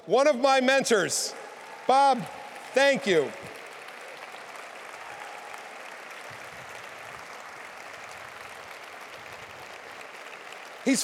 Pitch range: 185-235 Hz